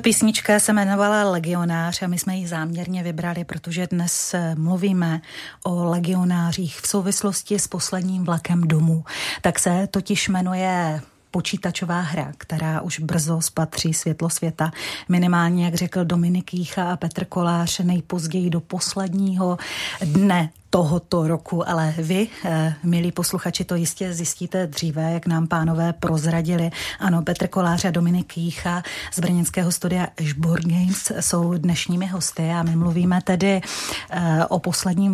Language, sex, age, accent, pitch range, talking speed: Czech, female, 30-49, native, 170-190 Hz, 135 wpm